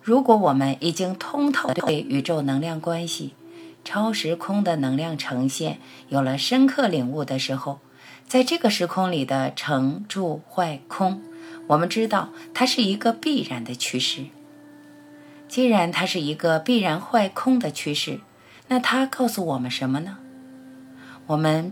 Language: Chinese